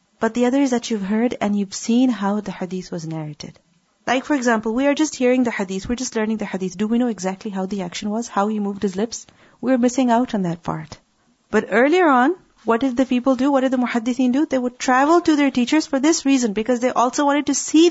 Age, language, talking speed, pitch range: 30-49, English, 255 wpm, 210-265 Hz